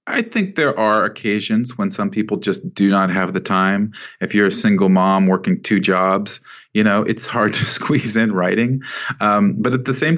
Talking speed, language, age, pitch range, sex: 205 wpm, English, 40-59, 80-105 Hz, male